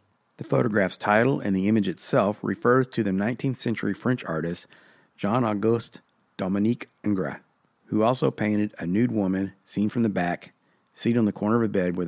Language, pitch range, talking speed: English, 100-120 Hz, 175 wpm